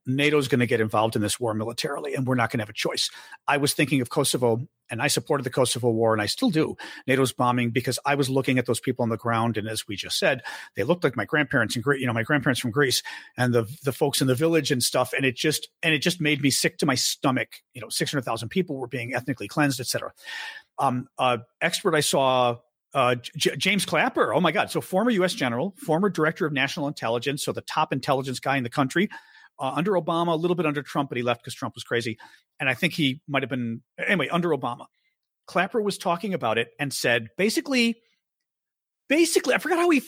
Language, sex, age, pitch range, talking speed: English, male, 40-59, 125-165 Hz, 240 wpm